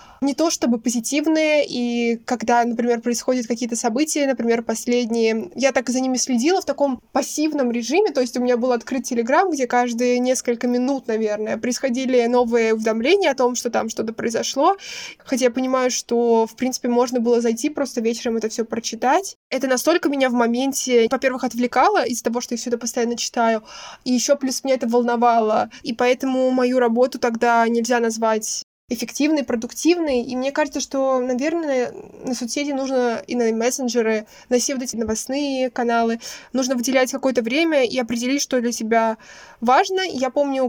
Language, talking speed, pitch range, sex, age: Russian, 170 wpm, 235-270 Hz, female, 20-39